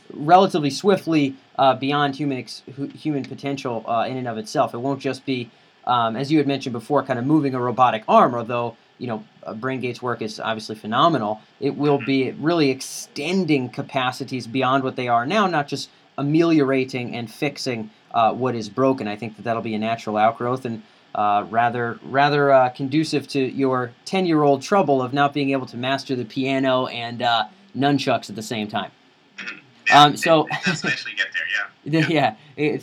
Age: 30-49